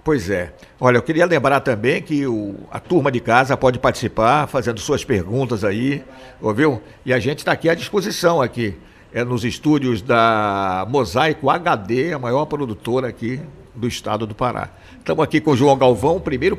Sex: male